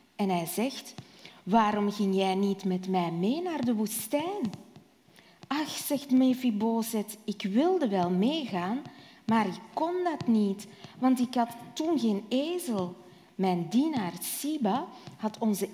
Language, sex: Dutch, female